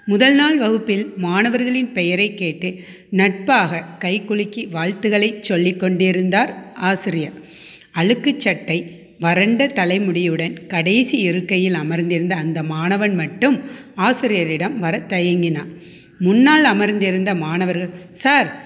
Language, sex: Tamil, female